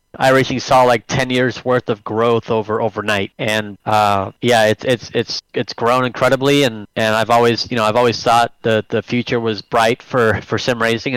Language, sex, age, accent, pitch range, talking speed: English, male, 20-39, American, 115-135 Hz, 205 wpm